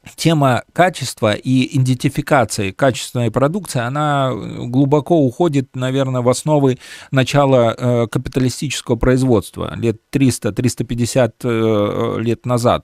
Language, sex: Russian, male